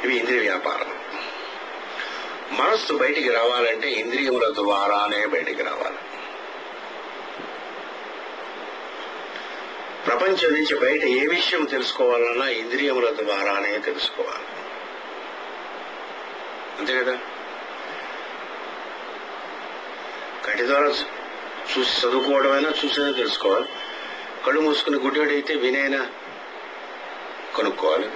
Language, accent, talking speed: English, Indian, 45 wpm